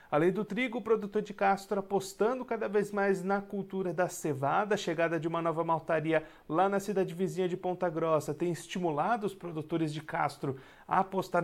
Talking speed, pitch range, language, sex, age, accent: 190 wpm, 155-200 Hz, Portuguese, male, 40-59, Brazilian